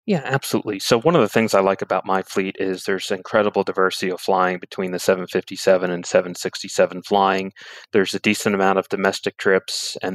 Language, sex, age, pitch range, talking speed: English, male, 30-49, 90-105 Hz, 190 wpm